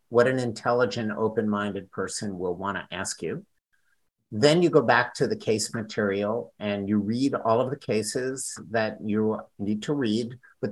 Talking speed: 170 wpm